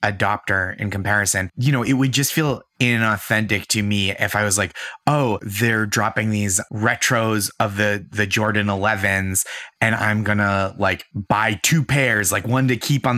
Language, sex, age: English, male, 20-39